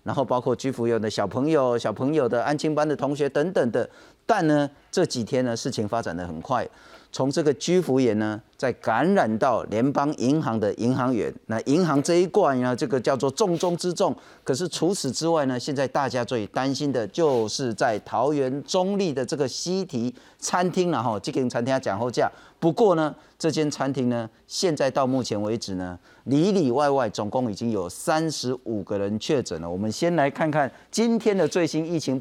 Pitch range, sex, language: 130-175 Hz, male, Chinese